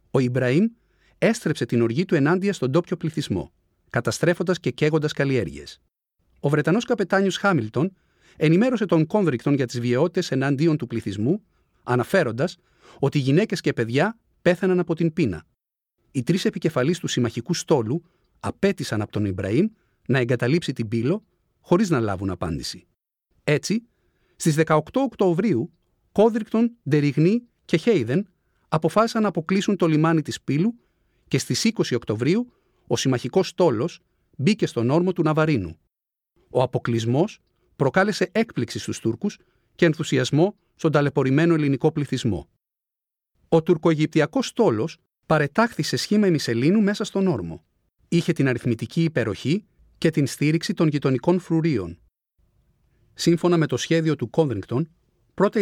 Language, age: Greek, 40-59